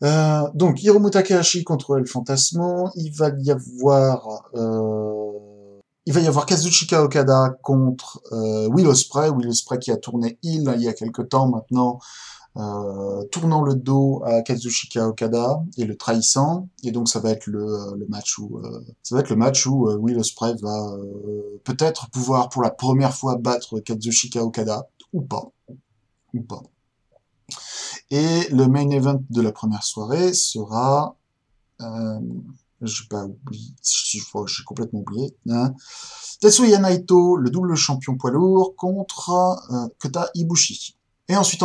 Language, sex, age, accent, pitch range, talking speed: French, male, 20-39, French, 115-150 Hz, 145 wpm